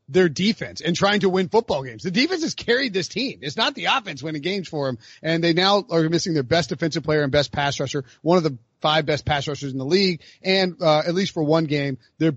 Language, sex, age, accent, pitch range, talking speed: English, male, 30-49, American, 140-190 Hz, 255 wpm